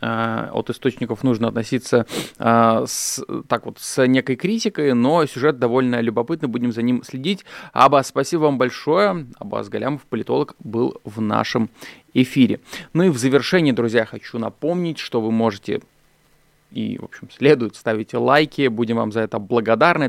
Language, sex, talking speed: Russian, male, 145 wpm